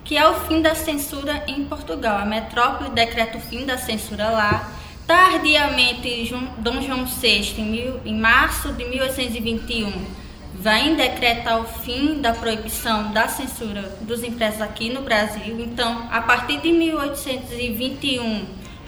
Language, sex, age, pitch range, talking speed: Portuguese, female, 10-29, 230-280 Hz, 135 wpm